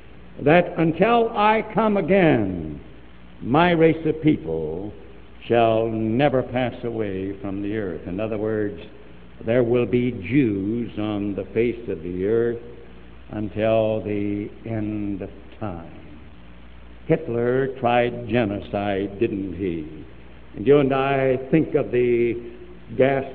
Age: 70-89